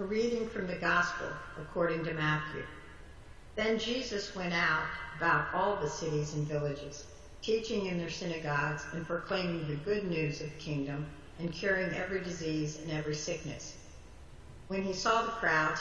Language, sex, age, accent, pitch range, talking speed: English, female, 60-79, American, 150-180 Hz, 160 wpm